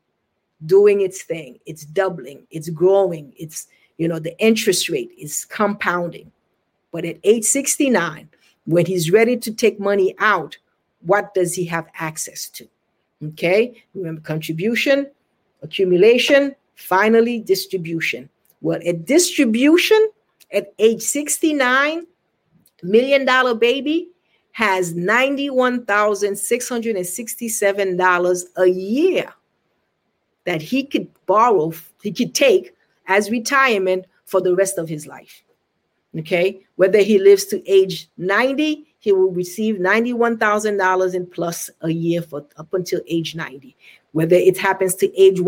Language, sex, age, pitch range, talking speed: English, female, 50-69, 175-240 Hz, 120 wpm